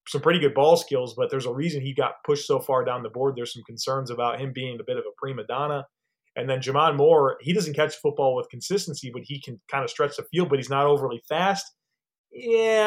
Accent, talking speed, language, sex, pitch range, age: American, 245 wpm, English, male, 135-180 Hz, 30-49